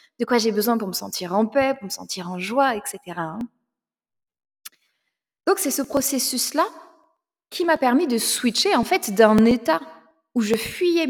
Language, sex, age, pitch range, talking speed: French, female, 20-39, 220-290 Hz, 170 wpm